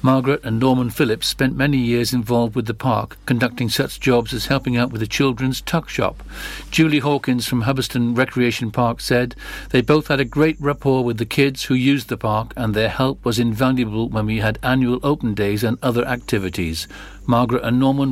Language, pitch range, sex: English, 115-140 Hz, male